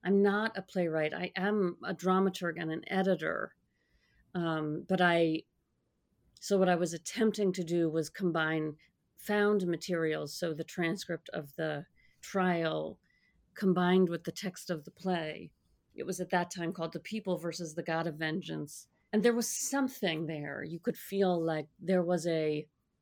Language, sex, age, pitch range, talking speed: English, female, 40-59, 165-190 Hz, 165 wpm